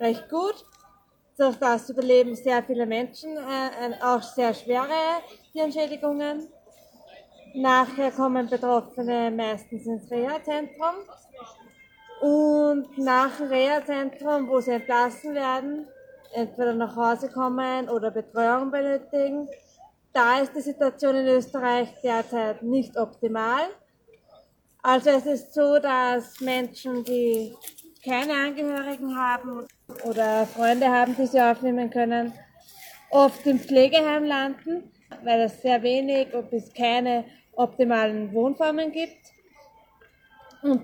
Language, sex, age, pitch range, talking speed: German, female, 20-39, 235-280 Hz, 110 wpm